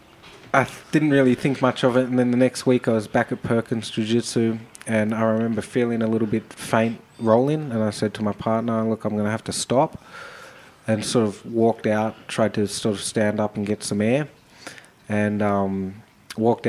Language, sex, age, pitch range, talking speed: English, male, 20-39, 100-115 Hz, 205 wpm